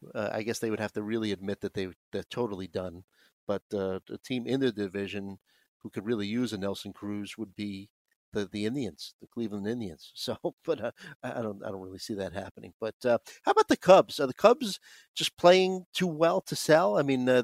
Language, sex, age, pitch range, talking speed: English, male, 50-69, 110-140 Hz, 225 wpm